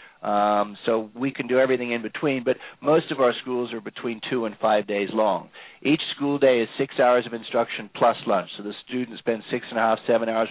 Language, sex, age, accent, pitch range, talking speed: English, male, 50-69, American, 105-130 Hz, 230 wpm